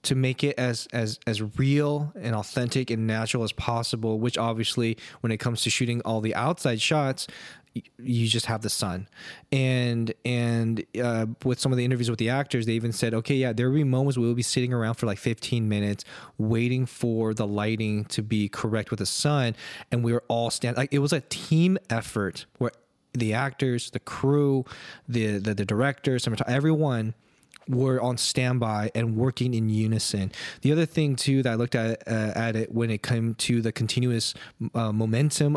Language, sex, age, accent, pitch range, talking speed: English, male, 20-39, American, 115-135 Hz, 195 wpm